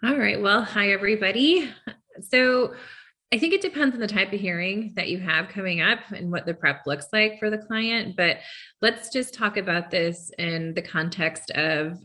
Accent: American